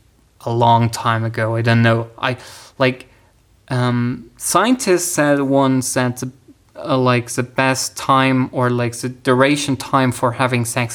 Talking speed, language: 150 wpm, English